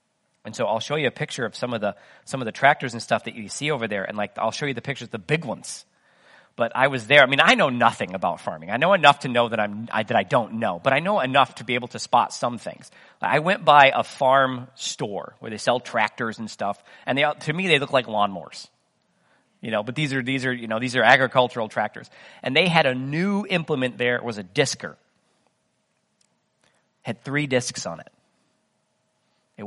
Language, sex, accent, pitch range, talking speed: English, male, American, 120-180 Hz, 235 wpm